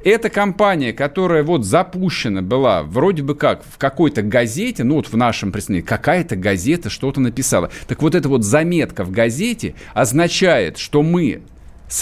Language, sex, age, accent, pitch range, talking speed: Russian, male, 50-69, native, 125-175 Hz, 160 wpm